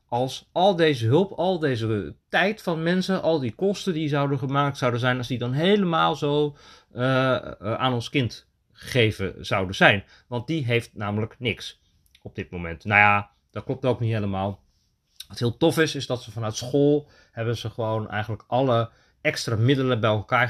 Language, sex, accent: Dutch, male, Dutch